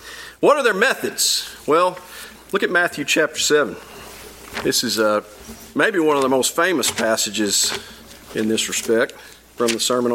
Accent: American